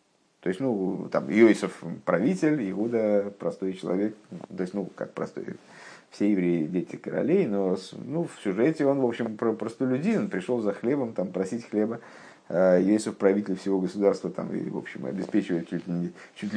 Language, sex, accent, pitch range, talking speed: Russian, male, native, 100-125 Hz, 165 wpm